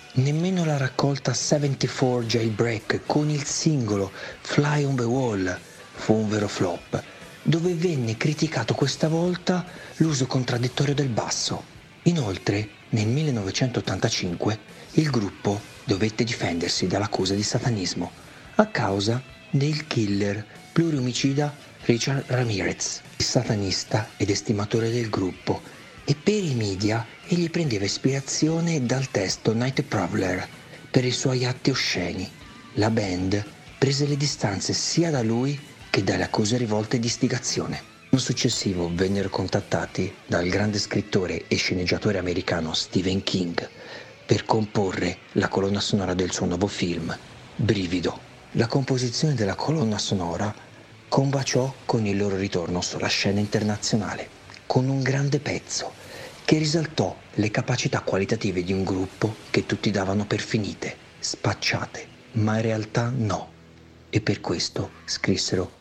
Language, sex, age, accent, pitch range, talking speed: Italian, male, 50-69, native, 100-140 Hz, 125 wpm